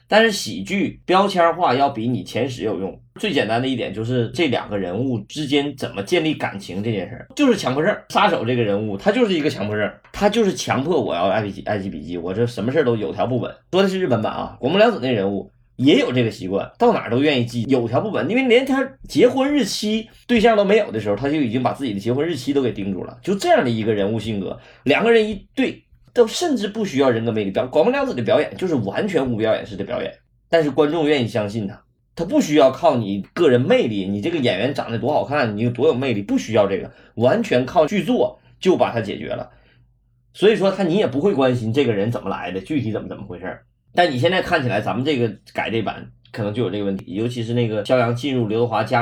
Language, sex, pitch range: Chinese, male, 115-175 Hz